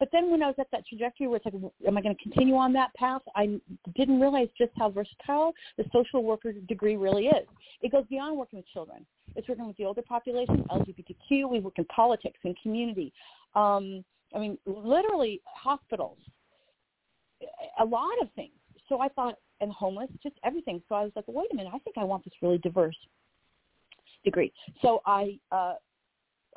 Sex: female